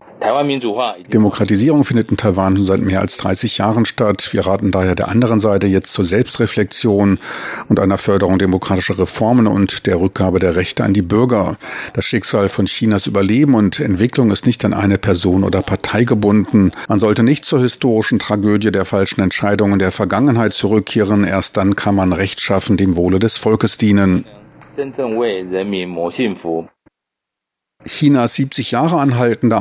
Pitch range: 100-115 Hz